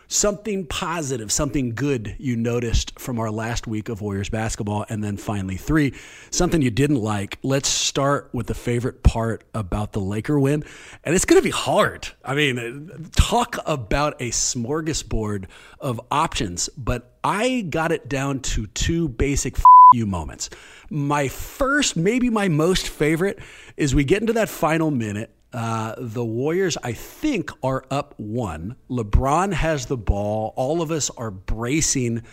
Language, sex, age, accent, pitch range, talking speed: English, male, 40-59, American, 115-160 Hz, 160 wpm